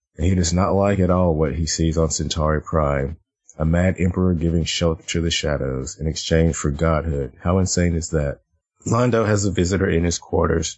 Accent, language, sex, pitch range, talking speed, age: American, English, male, 80-90 Hz, 200 wpm, 30-49